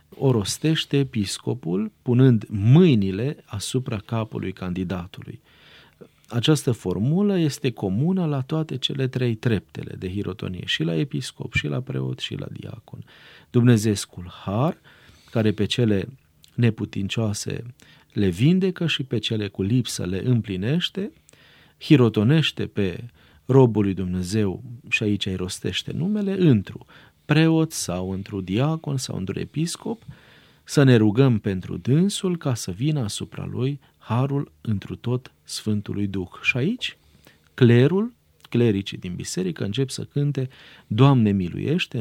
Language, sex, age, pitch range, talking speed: Romanian, male, 40-59, 100-140 Hz, 125 wpm